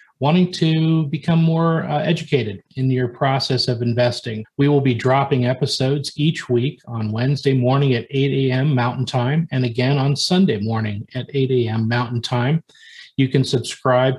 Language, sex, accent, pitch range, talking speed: English, male, American, 120-140 Hz, 165 wpm